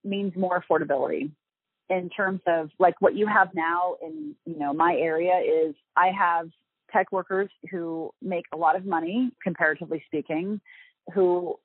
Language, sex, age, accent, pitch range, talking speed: English, female, 30-49, American, 160-205 Hz, 155 wpm